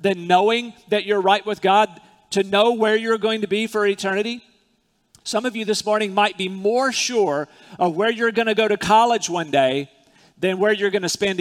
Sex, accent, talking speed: male, American, 215 wpm